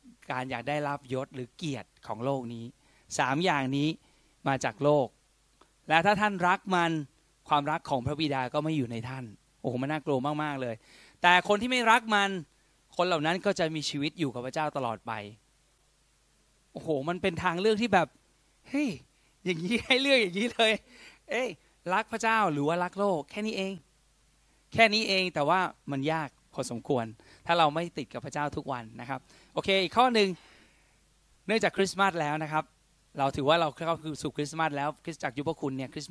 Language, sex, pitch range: Thai, male, 135-185 Hz